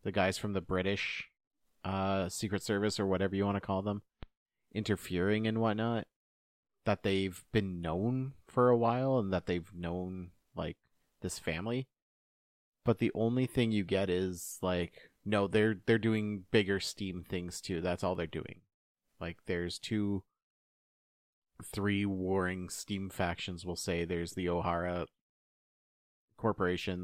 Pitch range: 90-105 Hz